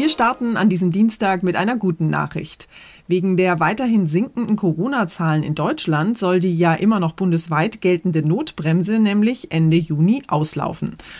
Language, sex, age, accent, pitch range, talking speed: German, female, 30-49, German, 170-220 Hz, 150 wpm